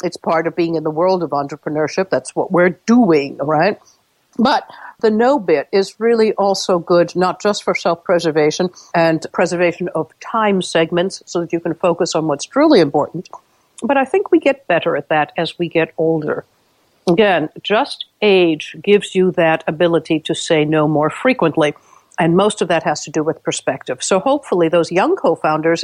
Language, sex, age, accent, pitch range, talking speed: English, female, 60-79, American, 165-215 Hz, 180 wpm